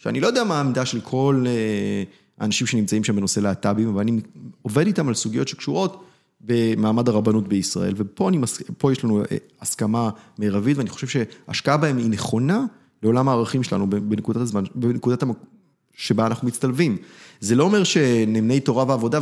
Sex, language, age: male, Hebrew, 30-49